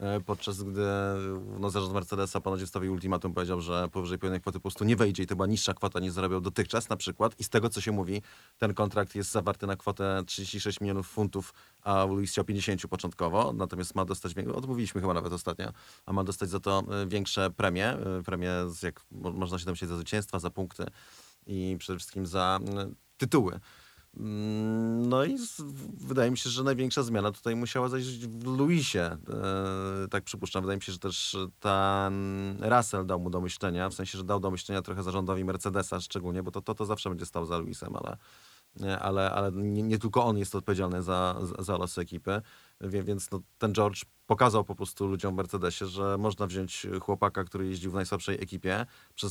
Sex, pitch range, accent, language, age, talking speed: male, 95-105 Hz, native, Polish, 30-49, 185 wpm